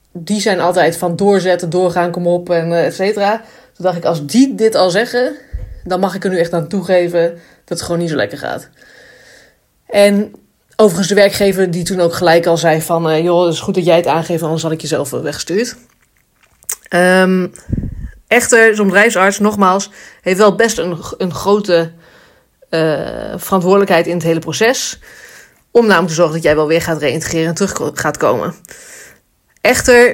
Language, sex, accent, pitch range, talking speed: Dutch, female, Dutch, 170-210 Hz, 180 wpm